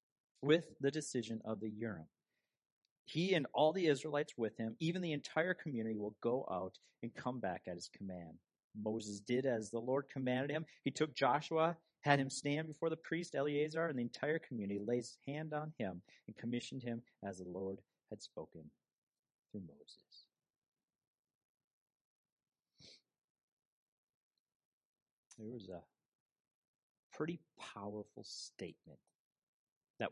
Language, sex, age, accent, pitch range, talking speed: English, male, 50-69, American, 110-155 Hz, 135 wpm